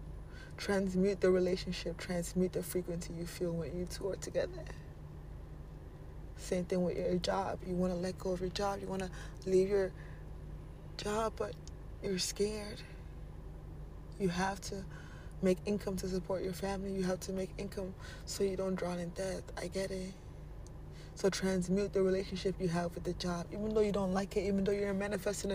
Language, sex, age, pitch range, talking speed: English, female, 20-39, 170-195 Hz, 180 wpm